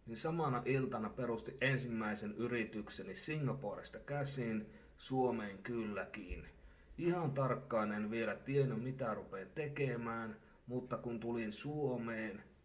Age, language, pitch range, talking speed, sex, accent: 30-49, Finnish, 110-140 Hz, 105 wpm, male, native